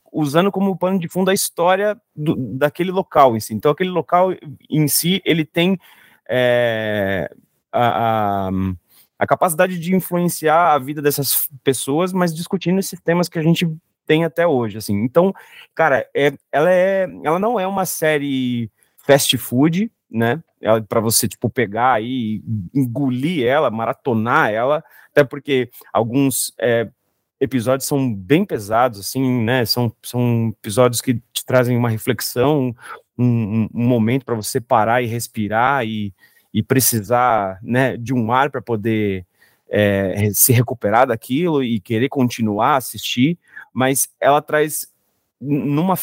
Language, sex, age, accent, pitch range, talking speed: Portuguese, male, 30-49, Brazilian, 115-155 Hz, 135 wpm